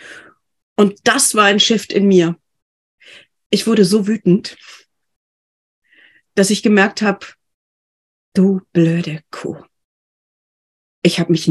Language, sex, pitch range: German, female, 180-220 Hz